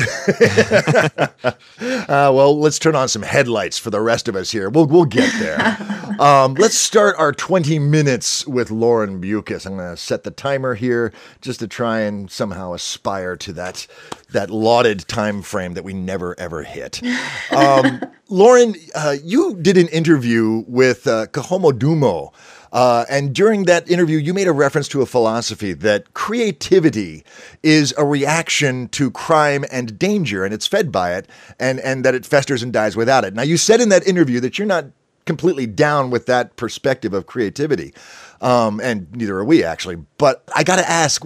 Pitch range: 115-170 Hz